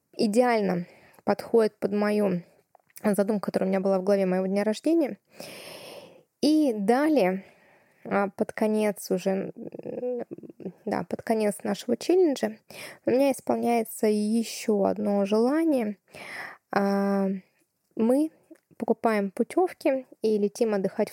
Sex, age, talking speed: female, 20-39, 100 wpm